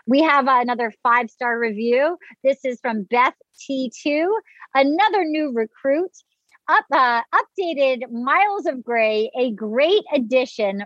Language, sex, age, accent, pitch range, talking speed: English, female, 40-59, American, 230-320 Hz, 115 wpm